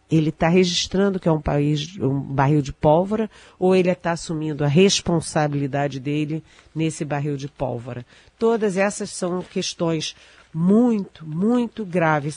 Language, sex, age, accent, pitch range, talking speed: Portuguese, female, 40-59, Brazilian, 145-175 Hz, 140 wpm